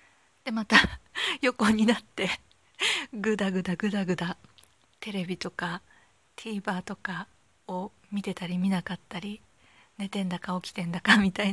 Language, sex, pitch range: Japanese, female, 185-235 Hz